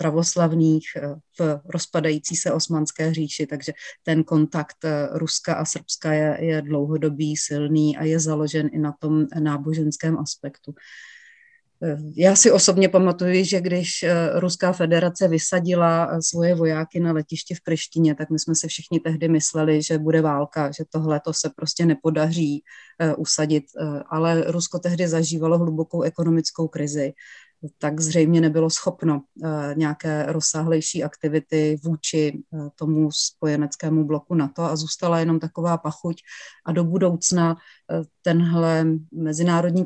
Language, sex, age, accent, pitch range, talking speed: Czech, female, 30-49, native, 155-170 Hz, 130 wpm